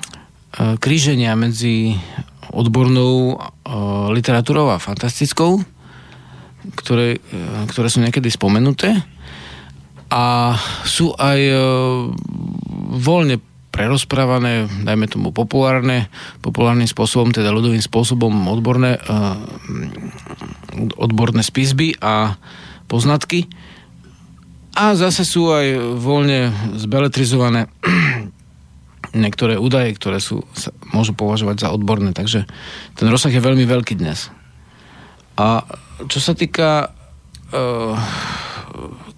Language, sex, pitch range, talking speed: Slovak, male, 105-130 Hz, 85 wpm